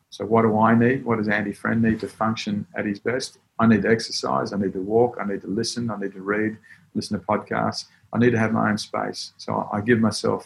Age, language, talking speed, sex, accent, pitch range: 40-59, English, 260 wpm, male, Australian, 100-115 Hz